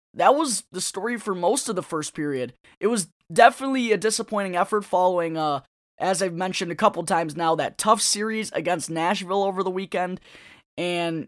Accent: American